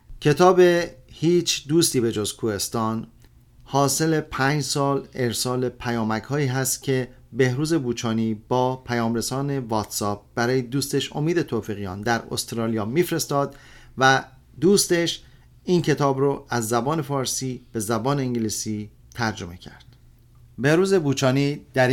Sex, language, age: male, Persian, 40-59